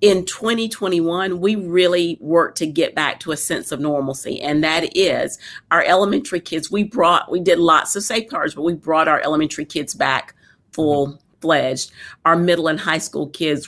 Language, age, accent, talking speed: English, 50-69, American, 175 wpm